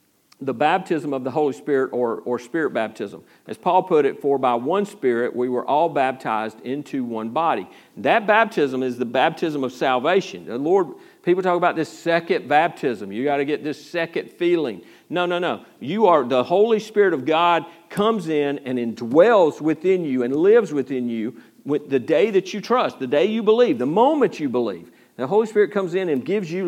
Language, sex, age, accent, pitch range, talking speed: English, male, 50-69, American, 125-175 Hz, 200 wpm